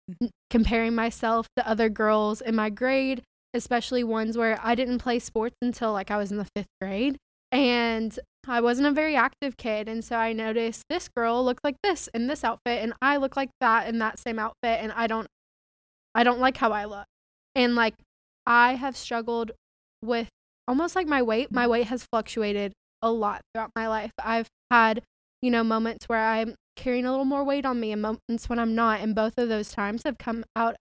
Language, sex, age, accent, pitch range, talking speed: English, female, 10-29, American, 220-245 Hz, 205 wpm